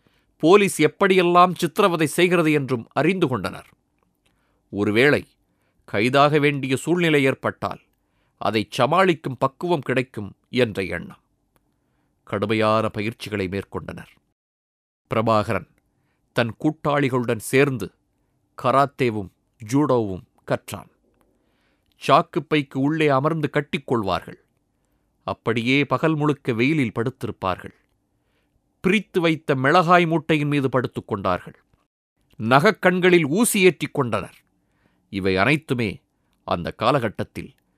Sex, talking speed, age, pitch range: male, 80 wpm, 30-49, 105-145 Hz